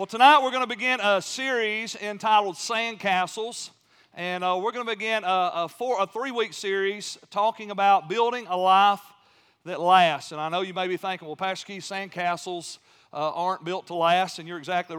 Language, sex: English, male